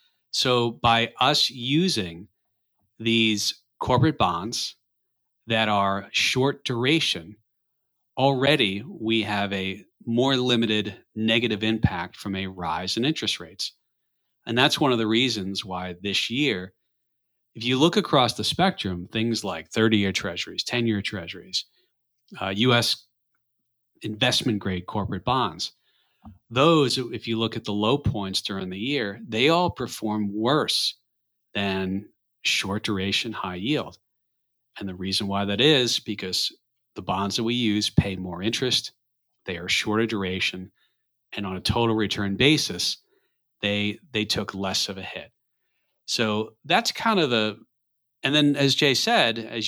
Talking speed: 140 wpm